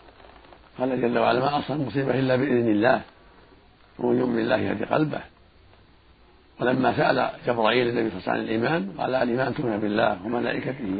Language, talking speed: Arabic, 140 wpm